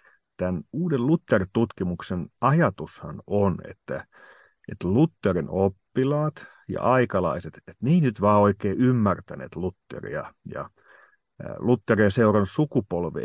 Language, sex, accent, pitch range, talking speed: Finnish, male, native, 95-120 Hz, 95 wpm